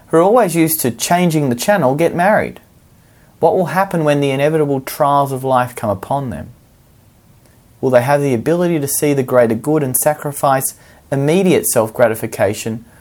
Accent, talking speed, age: Australian, 160 wpm, 30-49